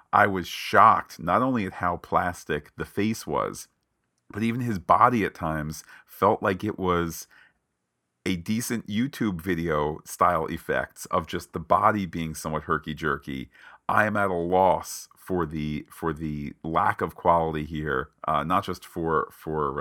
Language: English